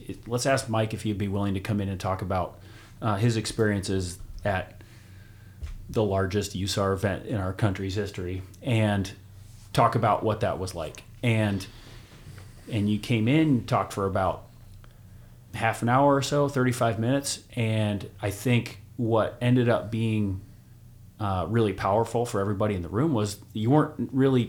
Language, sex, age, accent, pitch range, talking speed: English, male, 30-49, American, 100-115 Hz, 165 wpm